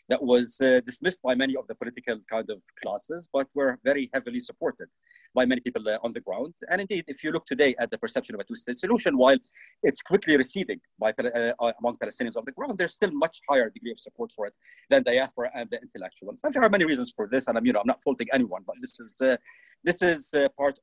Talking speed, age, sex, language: 245 wpm, 40-59, male, English